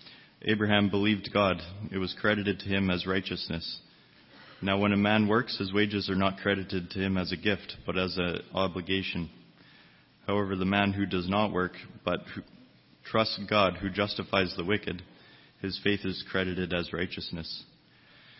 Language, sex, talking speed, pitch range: English, male, 160 wpm, 90-105 Hz